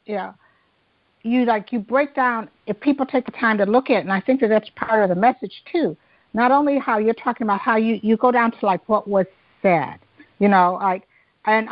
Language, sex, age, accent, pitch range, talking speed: English, female, 50-69, American, 195-250 Hz, 230 wpm